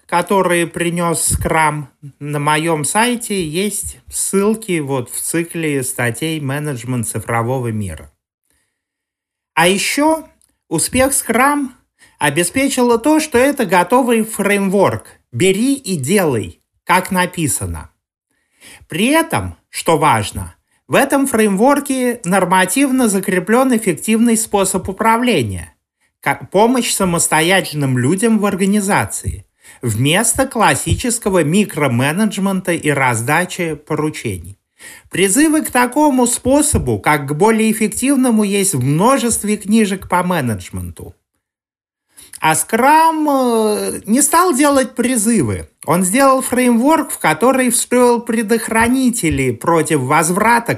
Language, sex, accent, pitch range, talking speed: Russian, male, native, 145-235 Hz, 100 wpm